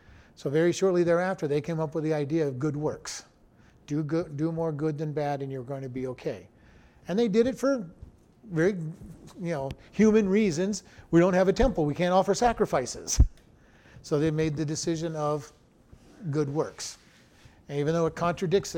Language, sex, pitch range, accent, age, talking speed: English, male, 145-185 Hz, American, 50-69, 180 wpm